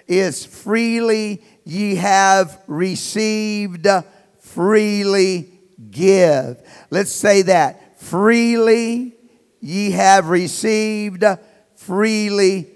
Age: 50-69